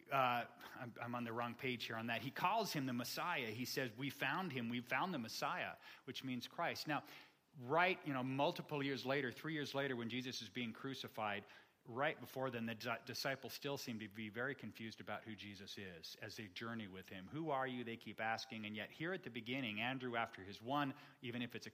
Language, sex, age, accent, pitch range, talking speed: English, male, 40-59, American, 115-150 Hz, 225 wpm